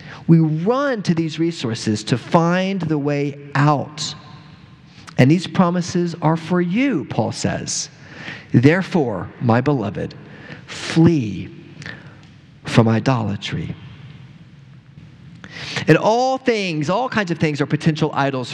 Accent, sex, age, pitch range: American, male, 40-59, 145-170 Hz